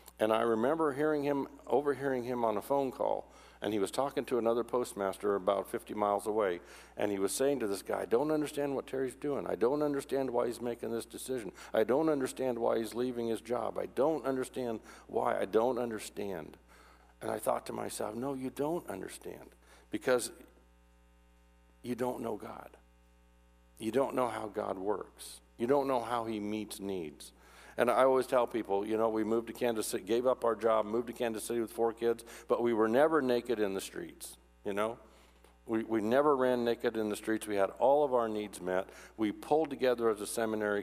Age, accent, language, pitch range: 60-79, American, English, 85-125 Hz